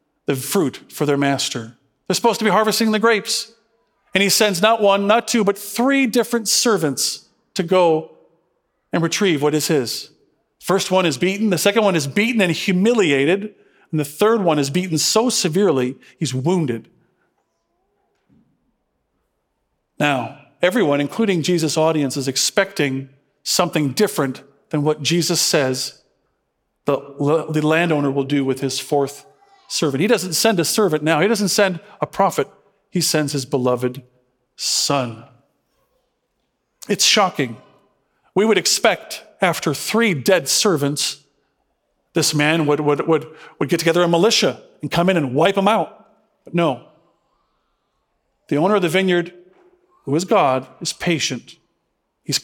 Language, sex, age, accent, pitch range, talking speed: English, male, 40-59, American, 145-210 Hz, 145 wpm